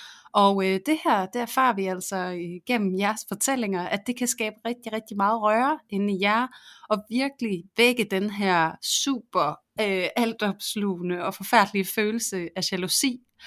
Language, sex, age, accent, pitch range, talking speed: Danish, female, 30-49, native, 185-225 Hz, 145 wpm